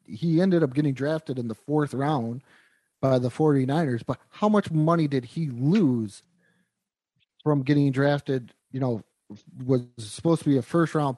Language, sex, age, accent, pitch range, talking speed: English, male, 30-49, American, 130-155 Hz, 160 wpm